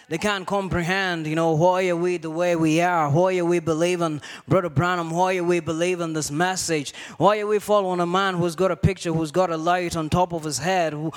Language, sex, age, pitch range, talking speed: English, male, 20-39, 175-215 Hz, 230 wpm